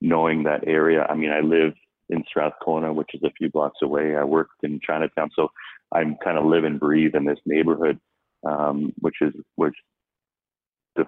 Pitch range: 75-80 Hz